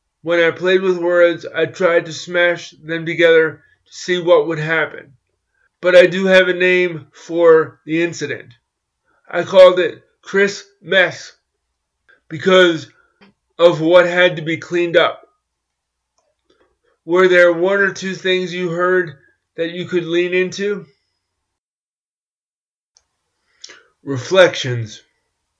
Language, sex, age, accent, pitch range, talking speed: English, male, 30-49, American, 135-175 Hz, 120 wpm